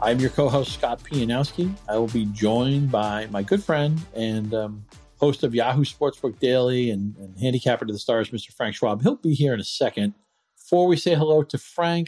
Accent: American